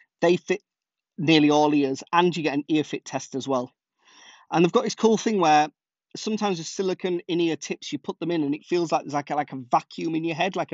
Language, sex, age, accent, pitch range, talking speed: English, male, 30-49, British, 140-185 Hz, 245 wpm